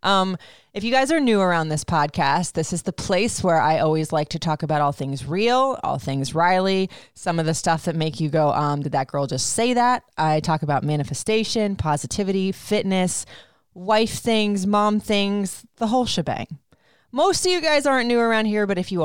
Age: 20-39